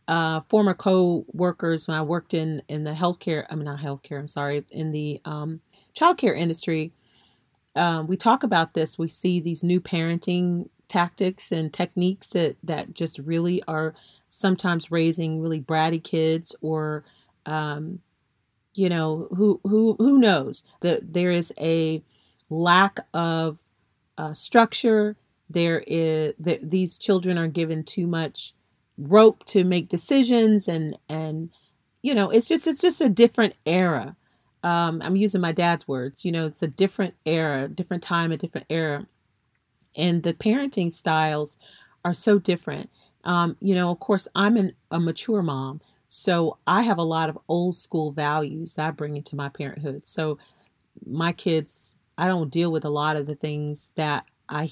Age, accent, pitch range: 40-59, American, 155-185 Hz